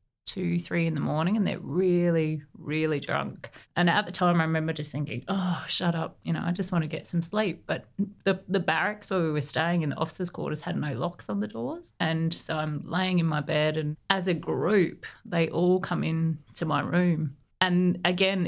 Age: 30-49